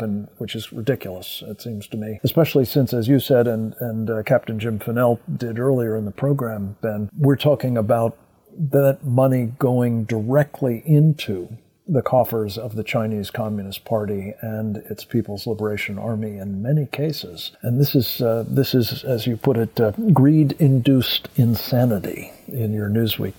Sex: male